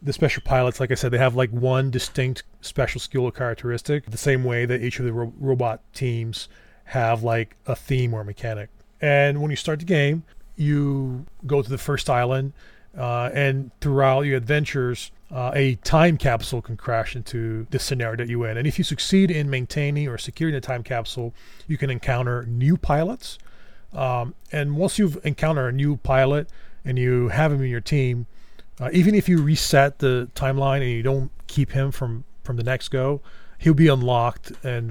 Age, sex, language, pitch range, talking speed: 30-49, male, English, 120-145 Hz, 190 wpm